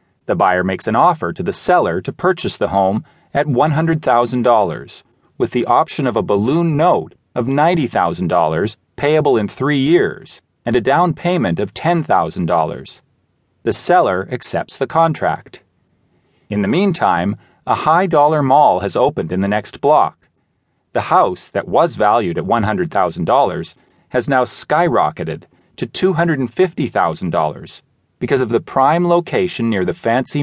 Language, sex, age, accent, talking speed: English, male, 40-59, American, 140 wpm